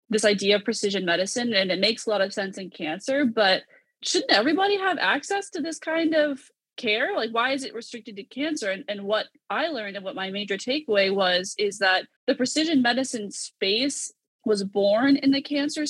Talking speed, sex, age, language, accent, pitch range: 200 wpm, female, 20-39, English, American, 190-265 Hz